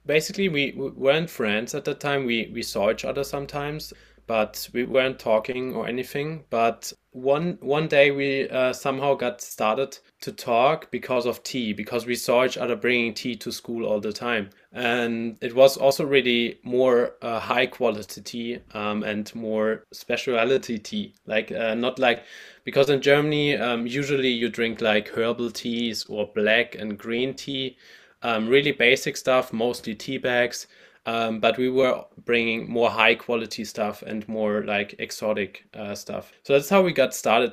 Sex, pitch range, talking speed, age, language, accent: male, 110-135 Hz, 170 wpm, 20-39, English, German